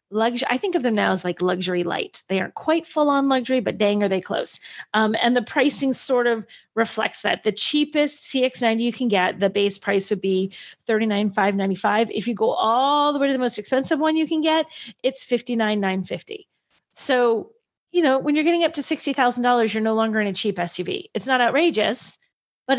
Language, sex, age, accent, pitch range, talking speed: English, female, 30-49, American, 215-275 Hz, 200 wpm